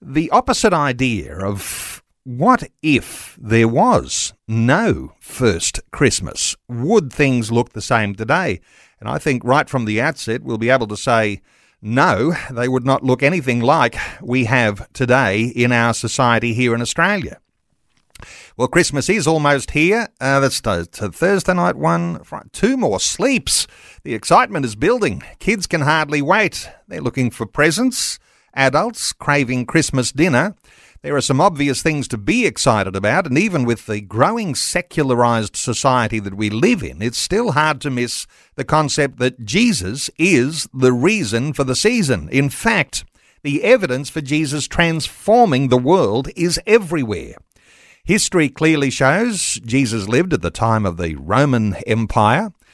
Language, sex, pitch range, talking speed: English, male, 115-155 Hz, 150 wpm